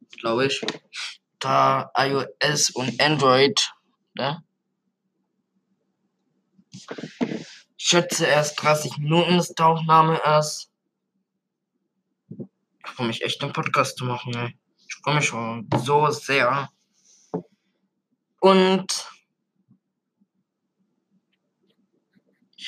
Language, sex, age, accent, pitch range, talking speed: German, male, 20-39, German, 135-200 Hz, 85 wpm